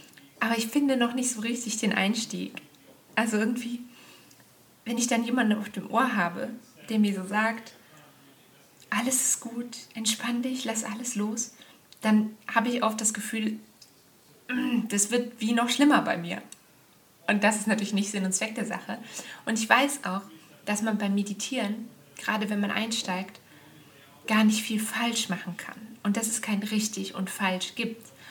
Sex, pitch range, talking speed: female, 195-235 Hz, 170 wpm